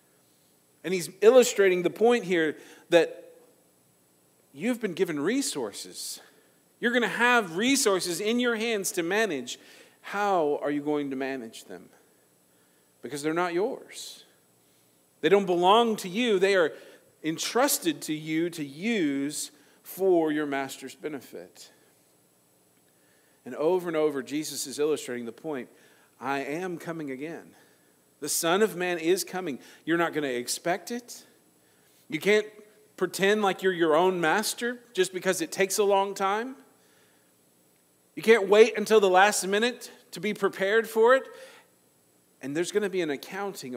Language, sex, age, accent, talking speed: English, male, 50-69, American, 145 wpm